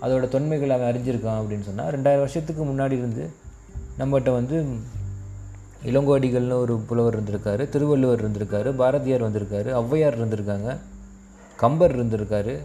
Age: 20-39